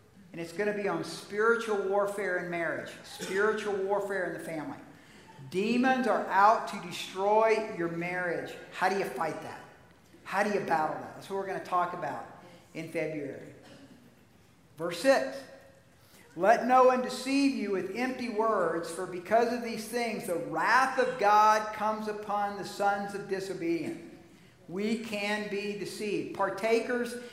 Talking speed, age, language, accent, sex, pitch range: 155 wpm, 50-69, English, American, male, 195-245 Hz